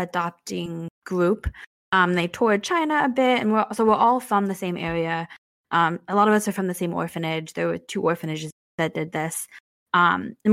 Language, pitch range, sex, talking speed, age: English, 175-215 Hz, female, 205 wpm, 20-39